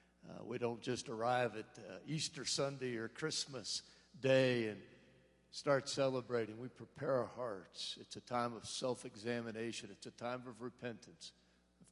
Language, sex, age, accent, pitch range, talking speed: English, male, 60-79, American, 85-130 Hz, 150 wpm